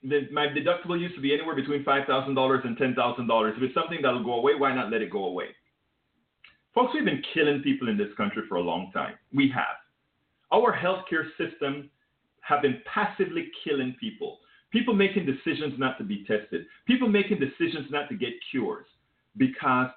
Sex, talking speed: male, 190 wpm